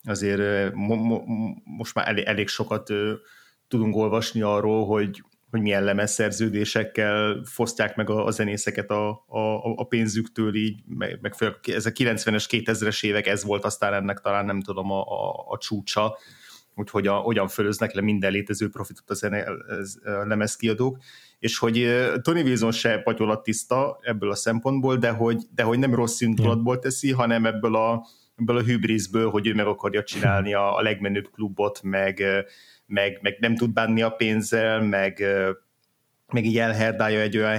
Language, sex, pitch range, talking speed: Hungarian, male, 105-115 Hz, 160 wpm